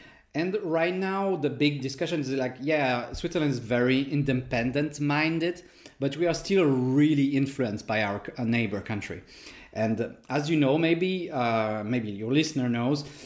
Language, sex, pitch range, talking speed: English, male, 115-145 Hz, 150 wpm